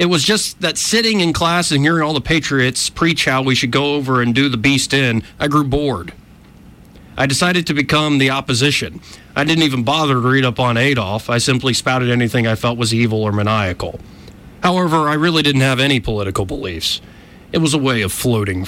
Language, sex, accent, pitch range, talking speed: English, male, American, 105-145 Hz, 210 wpm